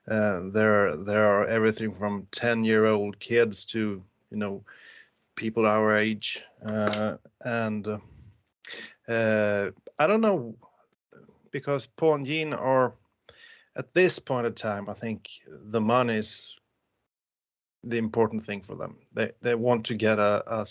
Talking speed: 145 wpm